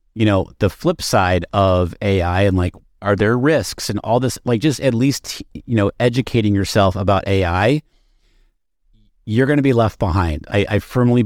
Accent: American